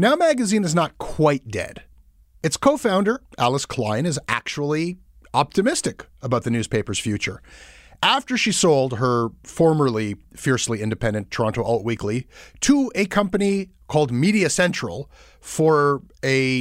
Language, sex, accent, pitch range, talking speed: English, male, American, 115-190 Hz, 125 wpm